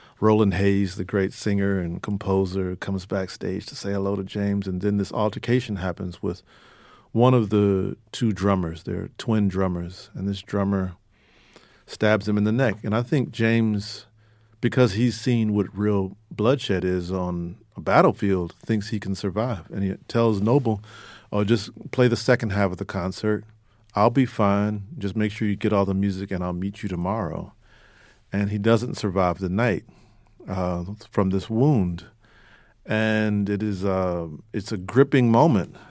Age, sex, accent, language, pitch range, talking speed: 40-59, male, American, English, 95-110 Hz, 170 wpm